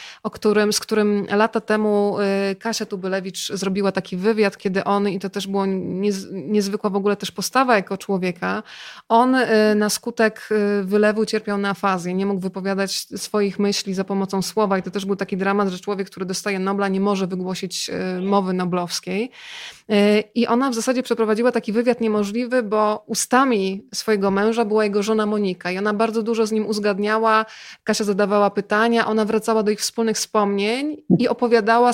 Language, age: Polish, 20-39